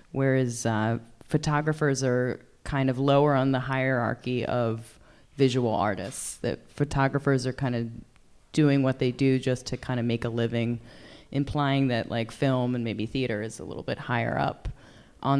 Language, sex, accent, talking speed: English, female, American, 170 wpm